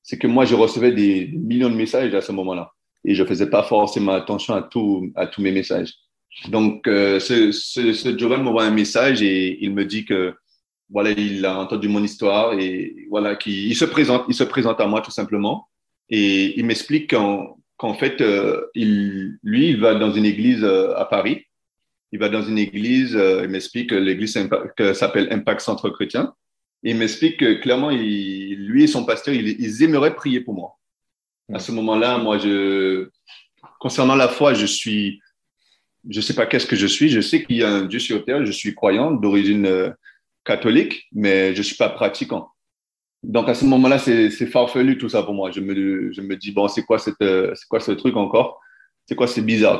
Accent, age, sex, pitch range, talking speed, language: French, 30-49, male, 100-130 Hz, 205 wpm, French